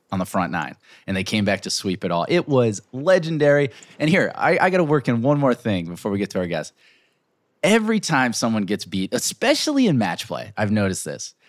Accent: American